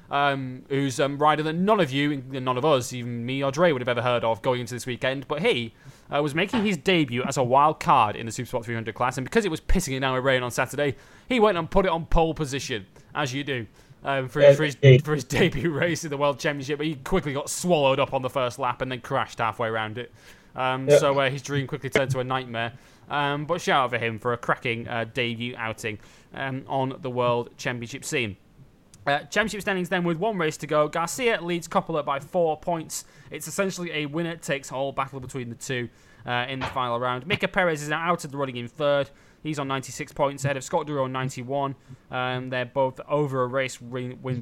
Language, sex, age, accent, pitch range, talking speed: English, male, 20-39, British, 125-155 Hz, 235 wpm